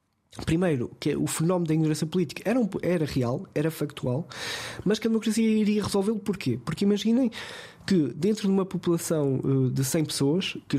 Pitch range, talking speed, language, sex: 135-175 Hz, 180 wpm, Portuguese, male